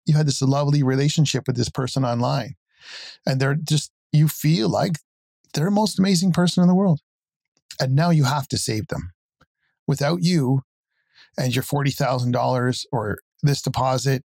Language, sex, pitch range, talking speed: English, male, 125-150 Hz, 160 wpm